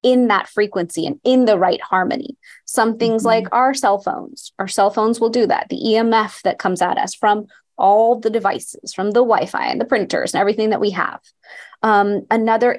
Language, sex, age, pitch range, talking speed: English, female, 20-39, 200-245 Hz, 200 wpm